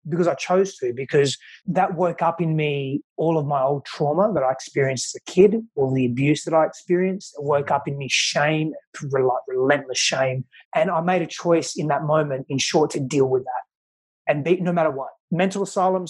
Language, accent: English, Australian